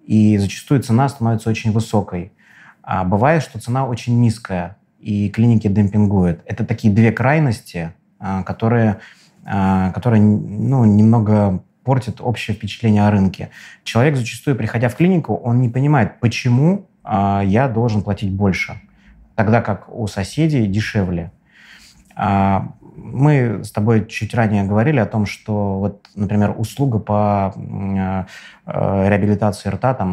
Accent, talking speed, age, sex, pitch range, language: native, 120 wpm, 20-39, male, 100-115 Hz, Russian